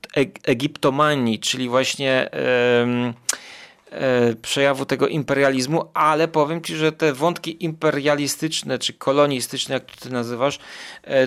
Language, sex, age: Polish, male, 30-49